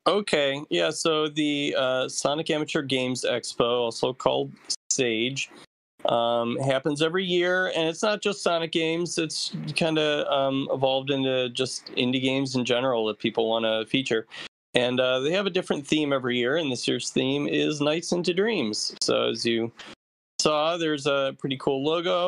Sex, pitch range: male, 115-155 Hz